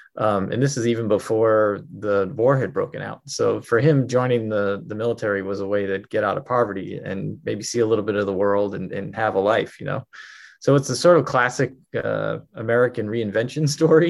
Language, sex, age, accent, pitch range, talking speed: English, male, 20-39, American, 110-130 Hz, 220 wpm